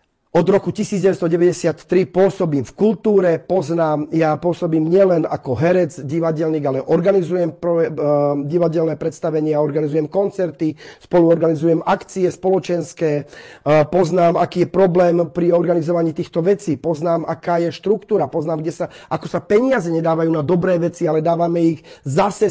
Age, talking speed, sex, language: 40-59, 135 wpm, male, Slovak